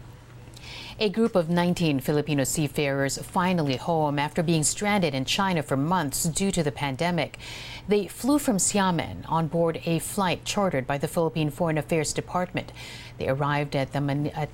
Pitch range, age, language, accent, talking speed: 140-180 Hz, 50-69, English, American, 165 wpm